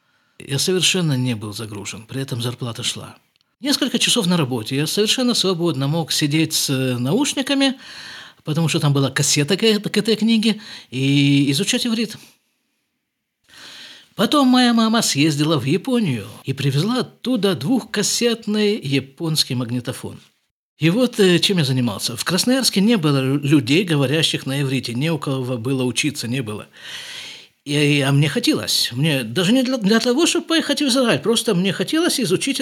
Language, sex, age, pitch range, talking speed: Russian, male, 50-69, 135-215 Hz, 145 wpm